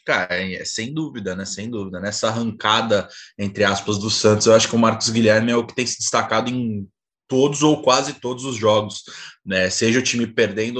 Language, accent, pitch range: Portuguese, Brazilian, 110-130 Hz